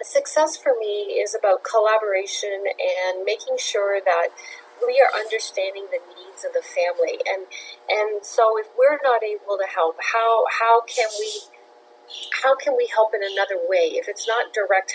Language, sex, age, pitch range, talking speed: English, female, 40-59, 200-320 Hz, 170 wpm